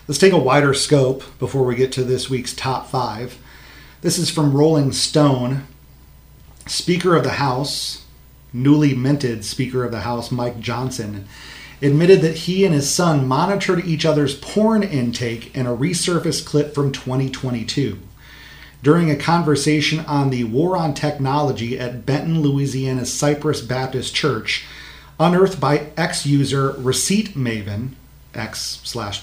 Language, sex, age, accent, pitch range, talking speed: English, male, 40-59, American, 125-155 Hz, 140 wpm